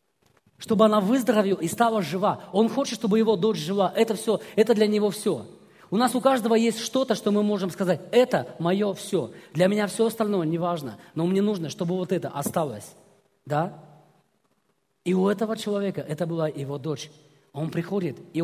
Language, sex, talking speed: Russian, male, 180 wpm